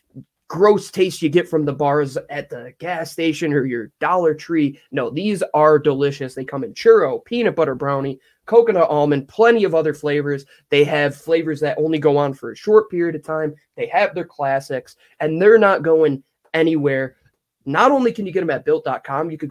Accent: American